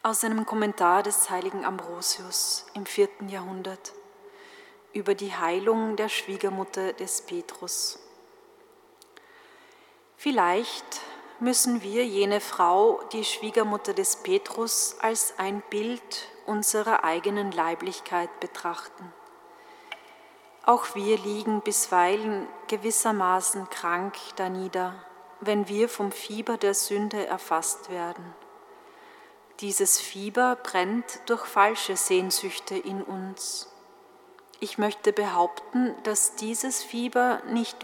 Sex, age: female, 30-49